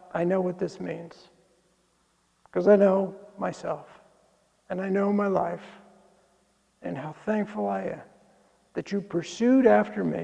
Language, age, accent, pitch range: English, 60-79, American, 170-210 Hz